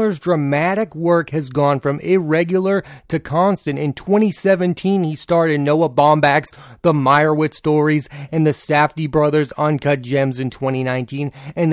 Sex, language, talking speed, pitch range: male, English, 145 wpm, 140-175 Hz